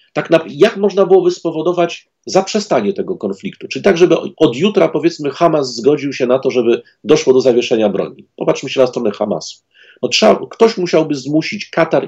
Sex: male